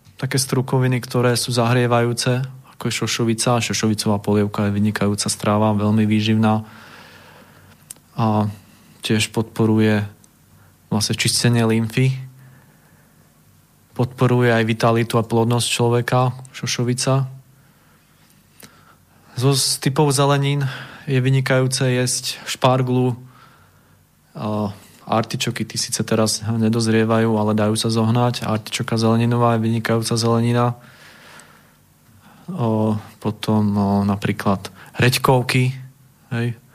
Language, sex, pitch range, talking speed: Slovak, male, 110-130 Hz, 90 wpm